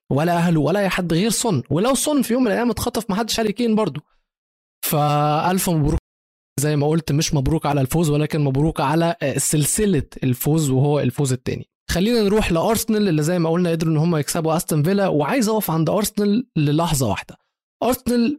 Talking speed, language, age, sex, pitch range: 175 wpm, Arabic, 20-39, male, 145-190 Hz